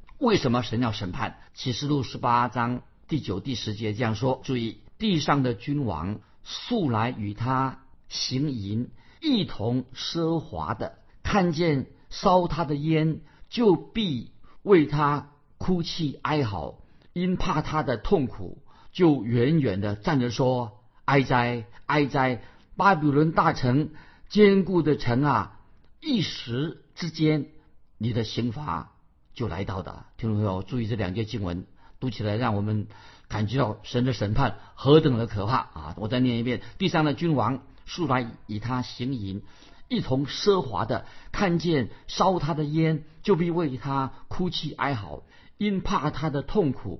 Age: 50-69